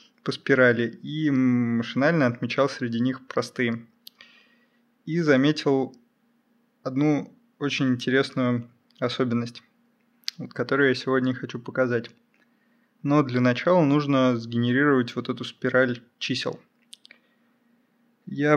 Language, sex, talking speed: Russian, male, 95 wpm